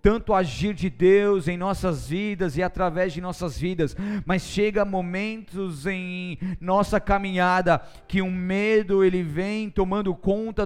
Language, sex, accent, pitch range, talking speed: Portuguese, male, Brazilian, 185-220 Hz, 140 wpm